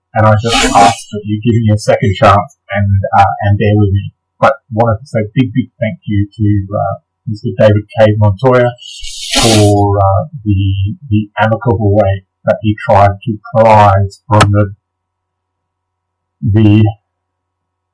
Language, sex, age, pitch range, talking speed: English, male, 30-49, 95-115 Hz, 150 wpm